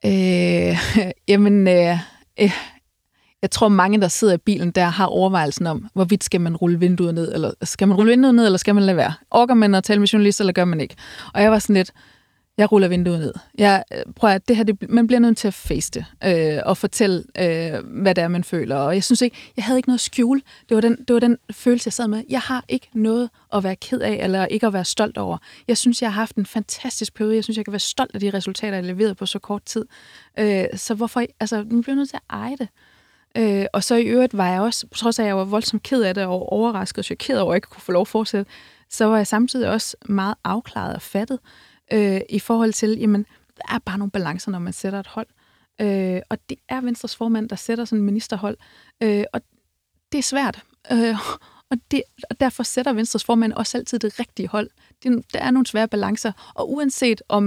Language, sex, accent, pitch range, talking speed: Danish, female, native, 195-235 Hz, 240 wpm